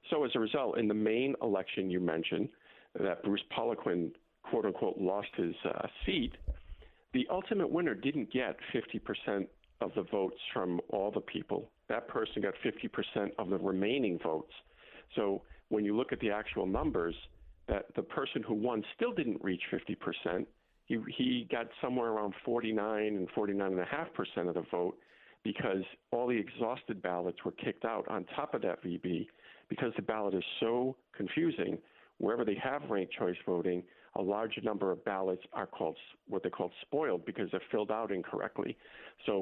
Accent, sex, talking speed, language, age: American, male, 175 wpm, English, 50-69